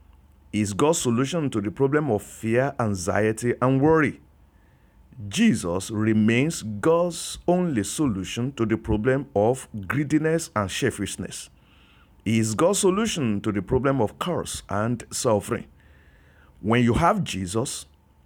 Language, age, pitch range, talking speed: English, 50-69, 85-135 Hz, 125 wpm